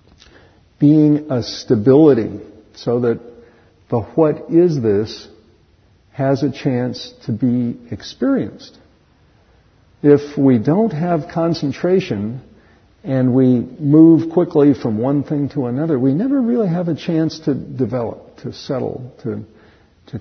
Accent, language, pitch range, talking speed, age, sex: American, English, 110-145 Hz, 120 wpm, 50-69, male